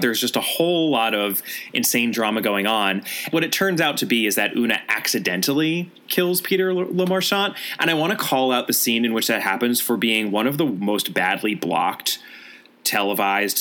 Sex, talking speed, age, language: male, 200 wpm, 20-39, English